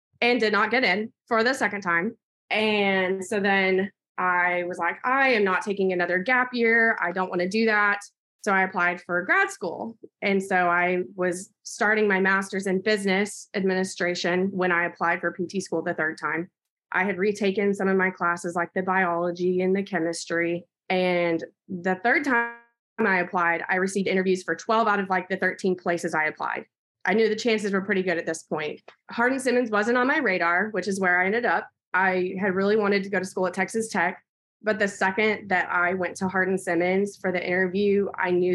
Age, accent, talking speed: 20-39, American, 205 wpm